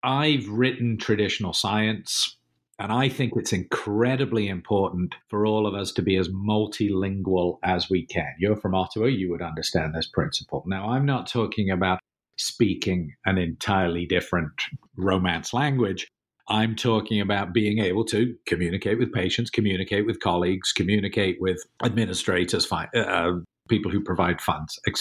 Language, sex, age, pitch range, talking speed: English, male, 50-69, 90-110 Hz, 145 wpm